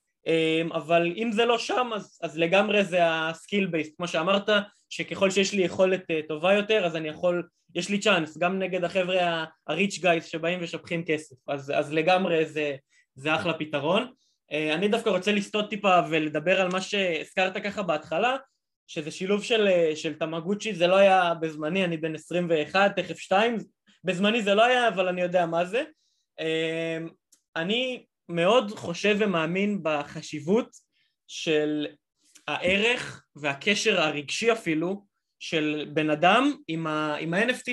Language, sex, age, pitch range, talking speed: Hebrew, male, 20-39, 165-205 Hz, 145 wpm